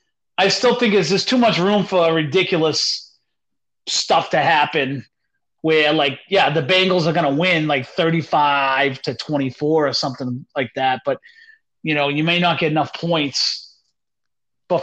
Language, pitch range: English, 155-210 Hz